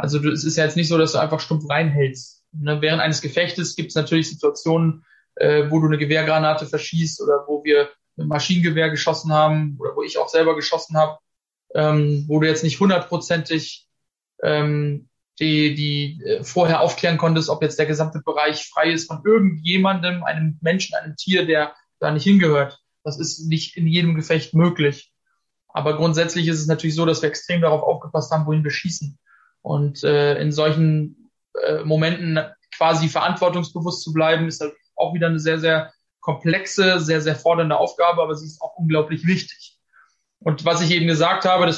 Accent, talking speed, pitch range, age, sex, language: German, 180 wpm, 155-170 Hz, 20-39, male, German